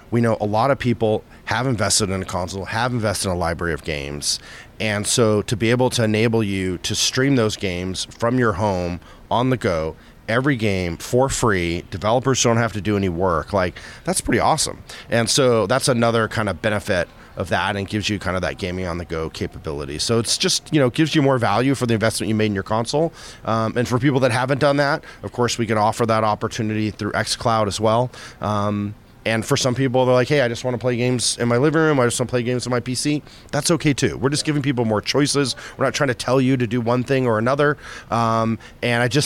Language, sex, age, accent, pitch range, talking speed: English, male, 30-49, American, 100-125 Hz, 240 wpm